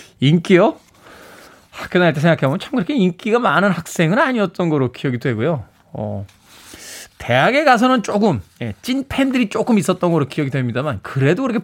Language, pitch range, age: Korean, 115-195 Hz, 20-39